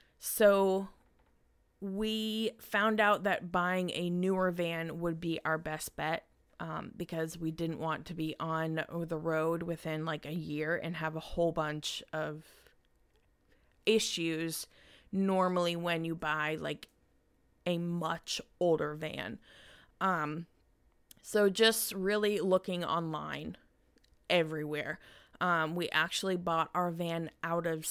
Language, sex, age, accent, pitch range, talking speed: English, female, 20-39, American, 160-185 Hz, 125 wpm